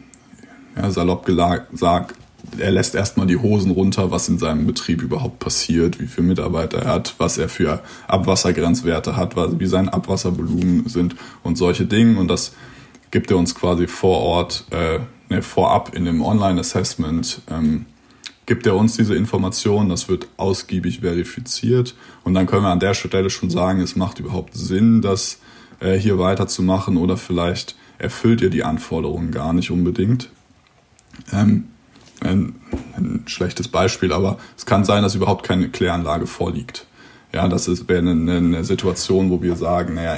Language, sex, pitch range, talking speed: German, male, 90-110 Hz, 155 wpm